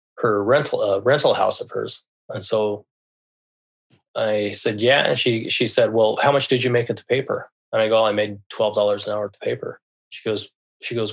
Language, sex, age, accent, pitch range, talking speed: English, male, 20-39, American, 110-130 Hz, 225 wpm